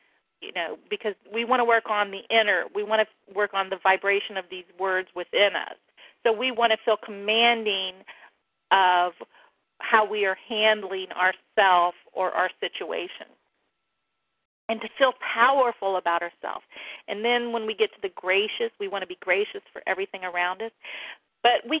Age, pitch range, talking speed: 40-59, 180-225 Hz, 170 wpm